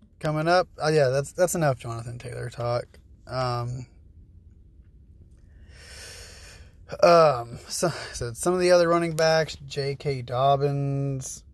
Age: 20-39